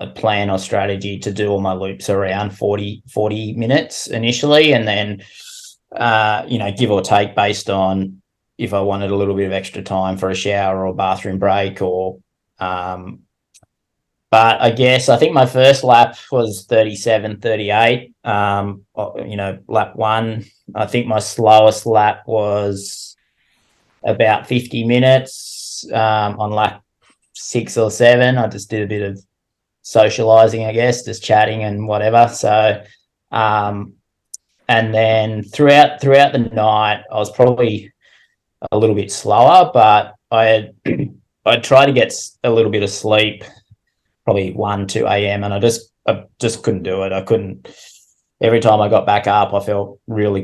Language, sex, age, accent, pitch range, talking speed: English, male, 20-39, Australian, 100-115 Hz, 160 wpm